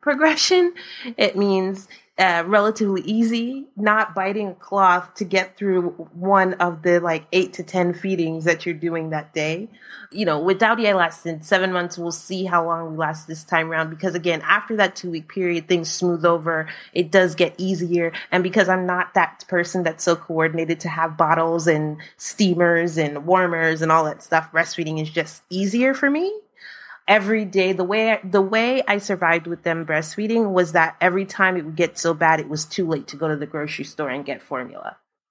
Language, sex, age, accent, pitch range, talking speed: English, female, 20-39, American, 165-215 Hz, 195 wpm